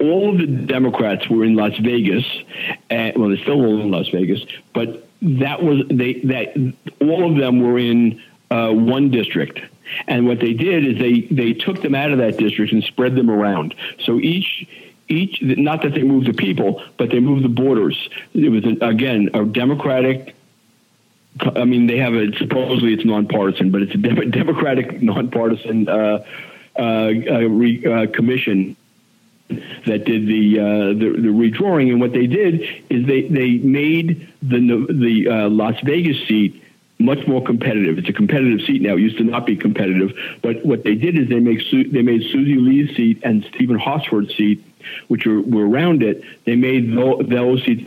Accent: American